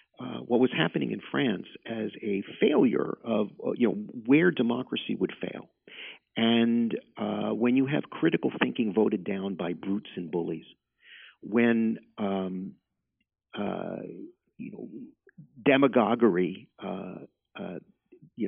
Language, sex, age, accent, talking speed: English, male, 50-69, American, 125 wpm